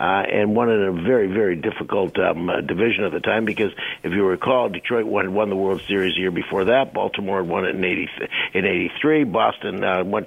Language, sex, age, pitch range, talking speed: English, male, 60-79, 105-125 Hz, 230 wpm